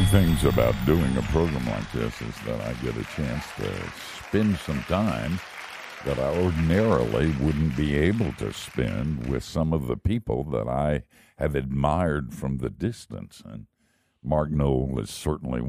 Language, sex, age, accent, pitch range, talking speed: English, male, 60-79, American, 70-85 Hz, 160 wpm